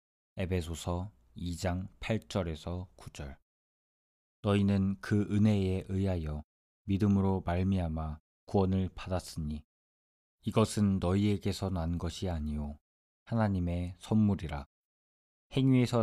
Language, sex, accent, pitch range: Korean, male, native, 75-95 Hz